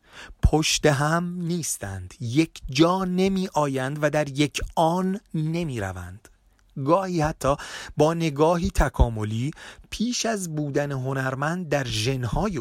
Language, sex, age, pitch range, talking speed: Persian, male, 30-49, 115-165 Hz, 115 wpm